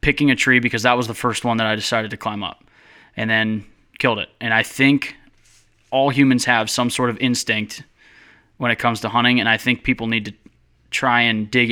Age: 20-39